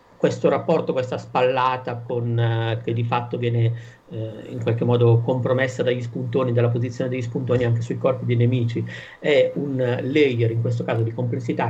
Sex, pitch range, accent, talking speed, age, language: male, 115-130 Hz, native, 180 wpm, 50-69, Italian